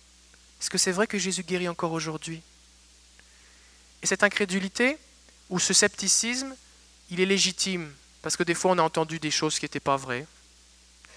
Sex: male